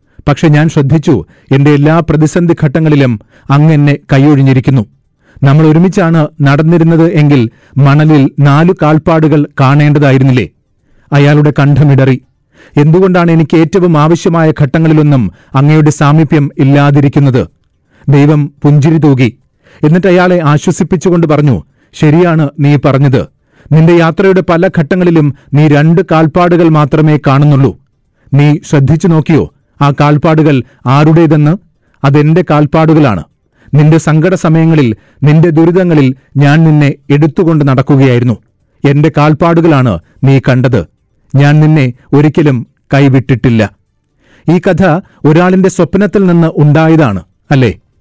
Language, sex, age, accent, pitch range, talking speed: Malayalam, male, 40-59, native, 140-165 Hz, 95 wpm